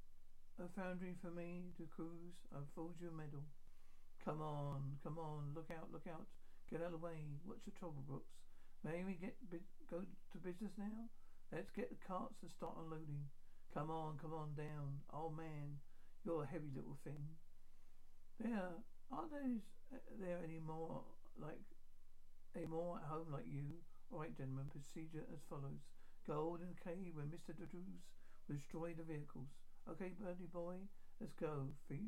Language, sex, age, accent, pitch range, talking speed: English, male, 60-79, British, 140-175 Hz, 165 wpm